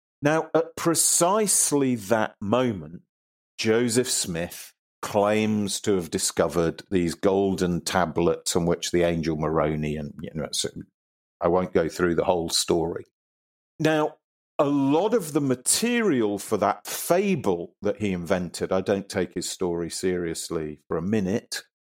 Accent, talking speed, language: British, 140 wpm, English